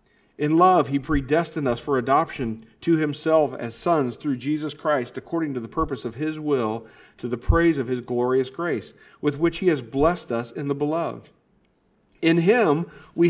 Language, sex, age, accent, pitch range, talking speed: English, male, 50-69, American, 130-170 Hz, 180 wpm